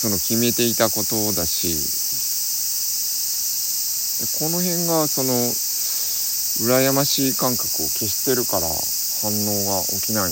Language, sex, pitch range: Japanese, male, 90-115 Hz